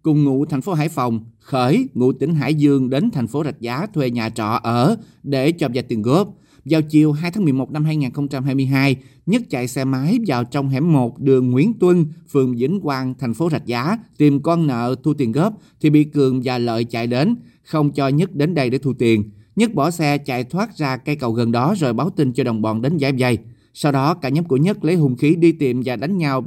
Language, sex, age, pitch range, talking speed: Vietnamese, male, 30-49, 125-155 Hz, 235 wpm